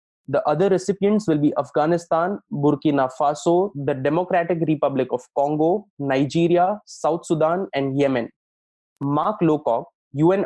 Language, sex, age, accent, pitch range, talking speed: English, male, 20-39, Indian, 145-175 Hz, 120 wpm